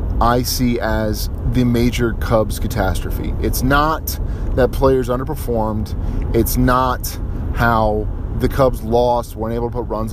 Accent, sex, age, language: American, male, 30-49, English